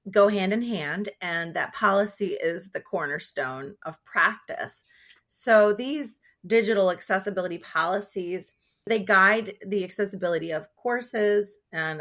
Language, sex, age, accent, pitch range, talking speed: English, female, 30-49, American, 175-215 Hz, 120 wpm